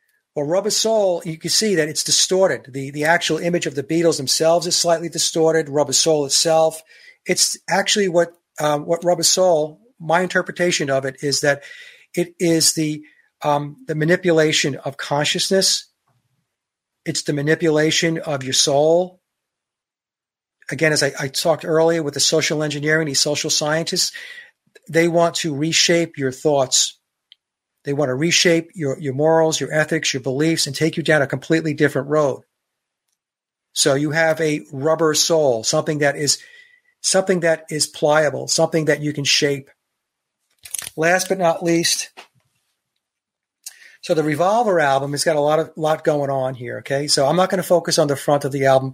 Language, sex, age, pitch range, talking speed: English, male, 40-59, 145-170 Hz, 165 wpm